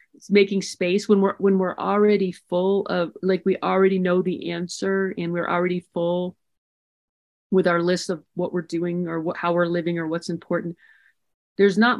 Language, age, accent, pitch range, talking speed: English, 40-59, American, 170-195 Hz, 175 wpm